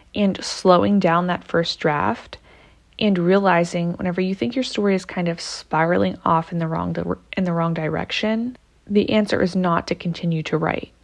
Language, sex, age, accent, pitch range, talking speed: English, female, 20-39, American, 170-200 Hz, 185 wpm